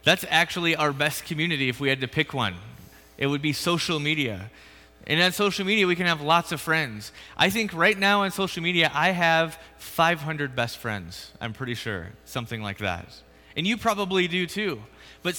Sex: male